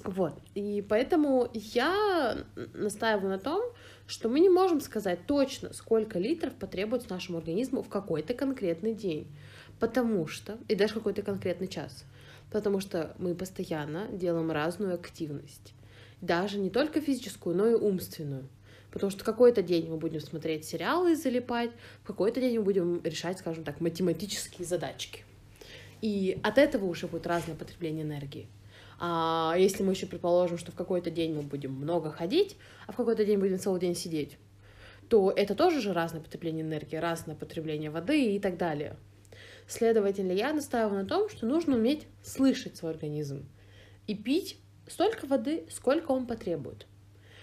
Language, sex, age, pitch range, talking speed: Russian, female, 20-39, 155-225 Hz, 155 wpm